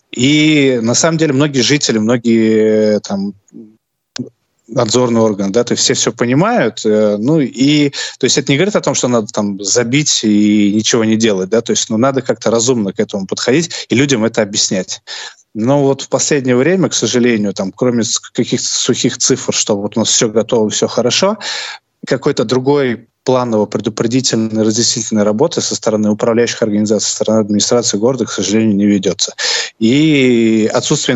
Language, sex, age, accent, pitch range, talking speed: Russian, male, 20-39, native, 105-125 Hz, 170 wpm